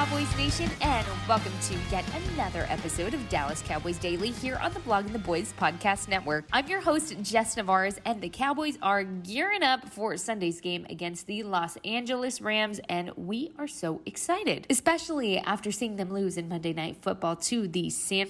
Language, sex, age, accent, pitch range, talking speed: English, female, 20-39, American, 180-245 Hz, 185 wpm